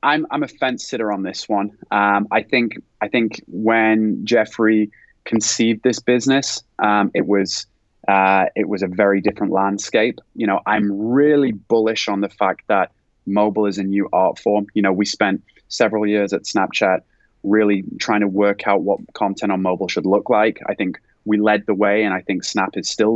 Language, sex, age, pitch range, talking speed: English, male, 20-39, 100-115 Hz, 195 wpm